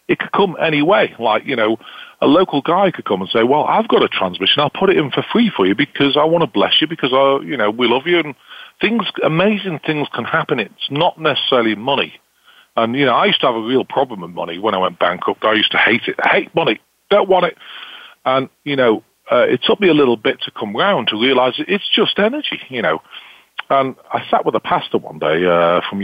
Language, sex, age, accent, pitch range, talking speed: English, male, 40-59, British, 115-185 Hz, 250 wpm